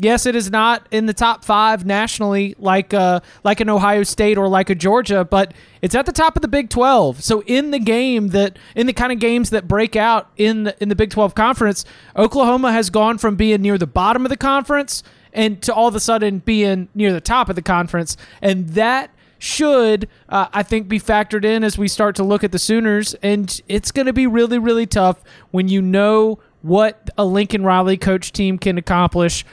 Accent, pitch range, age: American, 190-225 Hz, 20-39